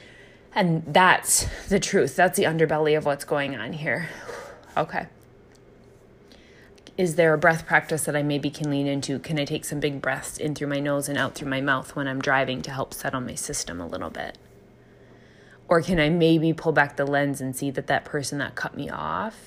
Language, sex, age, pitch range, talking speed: English, female, 20-39, 135-155 Hz, 205 wpm